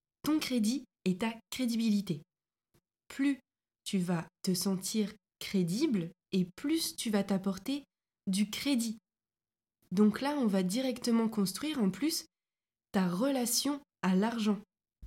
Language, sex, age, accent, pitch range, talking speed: French, female, 20-39, French, 185-235 Hz, 120 wpm